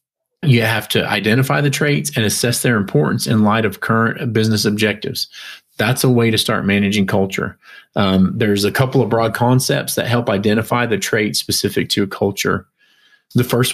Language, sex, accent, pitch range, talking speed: English, male, American, 110-130 Hz, 180 wpm